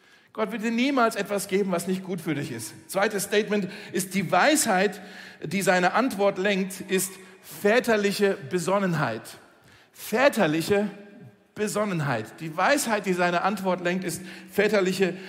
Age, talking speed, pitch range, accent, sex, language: 50-69, 135 wpm, 185-220 Hz, German, male, German